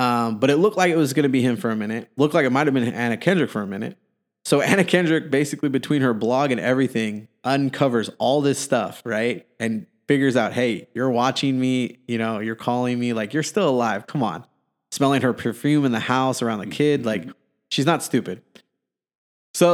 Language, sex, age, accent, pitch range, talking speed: English, male, 20-39, American, 110-140 Hz, 215 wpm